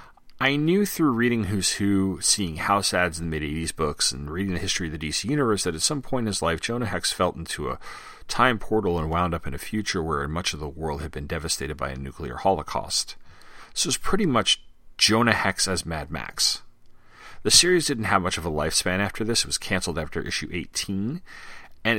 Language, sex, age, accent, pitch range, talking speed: English, male, 40-59, American, 80-120 Hz, 220 wpm